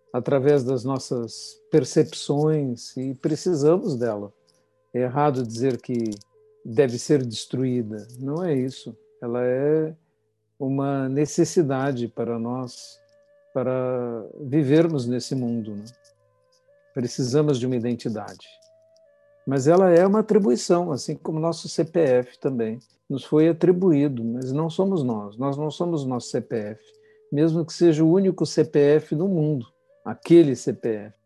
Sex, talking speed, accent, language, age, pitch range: male, 125 wpm, Brazilian, Portuguese, 50-69, 125-170 Hz